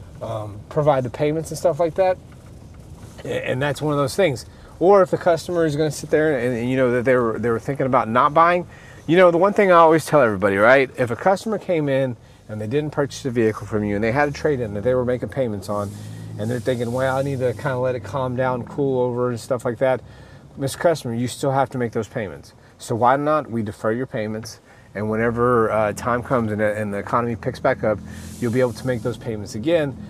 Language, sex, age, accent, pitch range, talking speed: English, male, 30-49, American, 115-150 Hz, 245 wpm